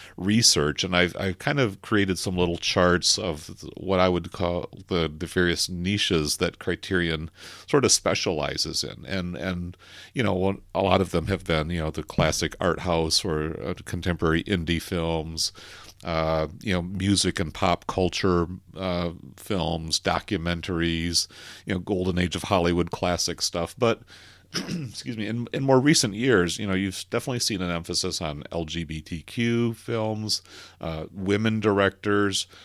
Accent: American